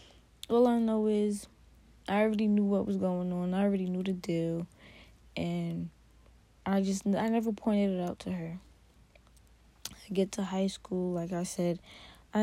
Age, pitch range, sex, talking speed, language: 20-39, 175-215 Hz, female, 170 wpm, English